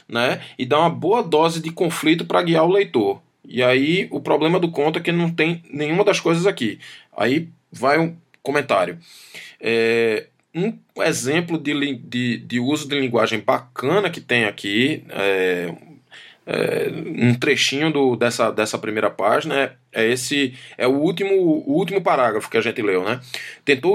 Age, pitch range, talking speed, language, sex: 20-39, 125-160 Hz, 155 wpm, Portuguese, male